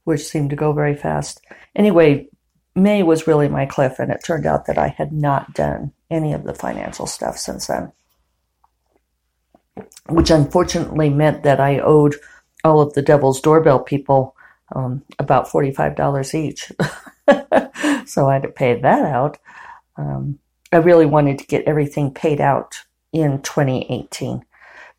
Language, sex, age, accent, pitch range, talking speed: English, female, 50-69, American, 135-160 Hz, 150 wpm